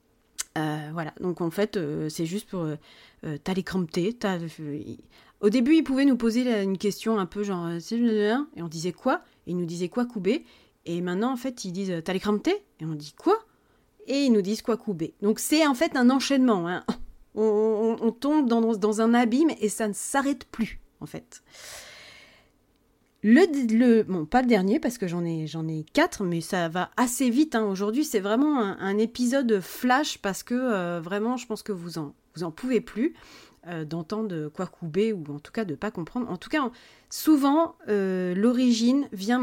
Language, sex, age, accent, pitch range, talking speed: French, female, 30-49, French, 180-255 Hz, 200 wpm